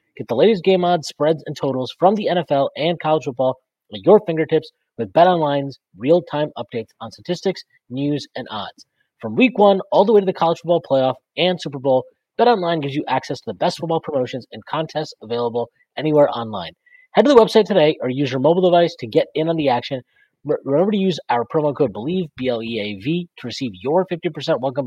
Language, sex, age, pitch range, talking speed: English, male, 30-49, 125-175 Hz, 200 wpm